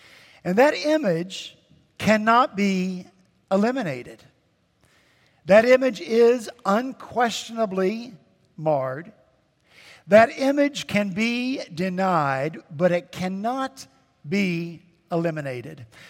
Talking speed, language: 80 wpm, English